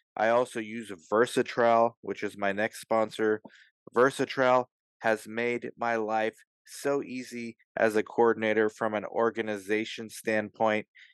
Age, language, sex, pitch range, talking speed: 20-39, English, male, 110-130 Hz, 125 wpm